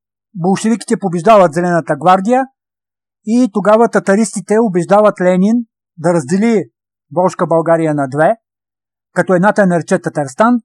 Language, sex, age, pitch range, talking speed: Bulgarian, male, 50-69, 150-195 Hz, 105 wpm